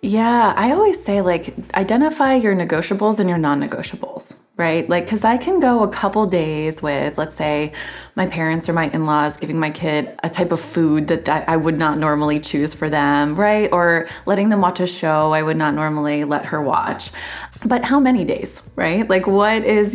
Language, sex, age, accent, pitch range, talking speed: English, female, 20-39, American, 160-215 Hz, 200 wpm